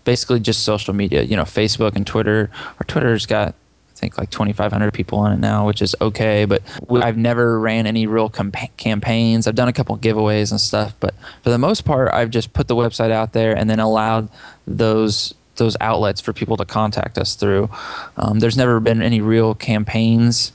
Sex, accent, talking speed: male, American, 205 wpm